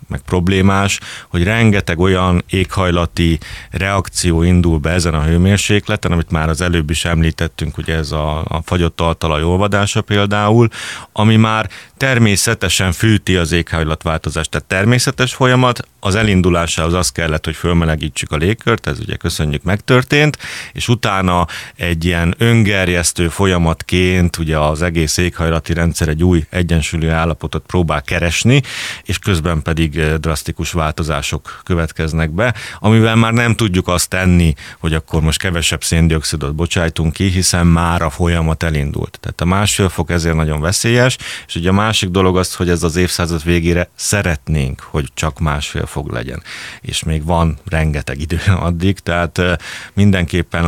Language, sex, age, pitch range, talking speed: Hungarian, male, 30-49, 80-100 Hz, 145 wpm